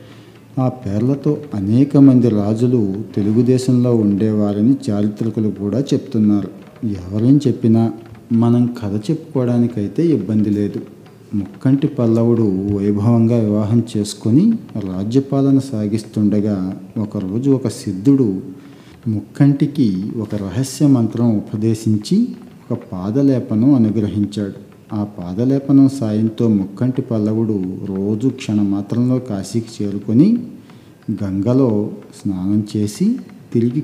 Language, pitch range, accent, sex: Telugu, 105-125 Hz, native, male